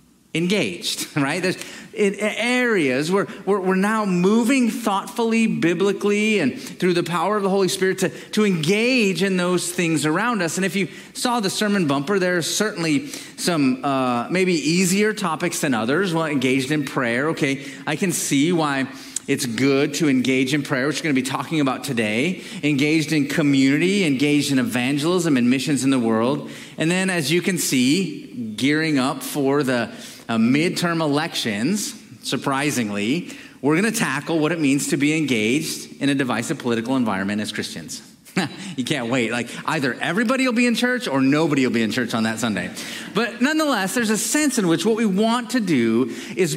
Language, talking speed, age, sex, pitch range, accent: English, 180 wpm, 40-59, male, 145-210 Hz, American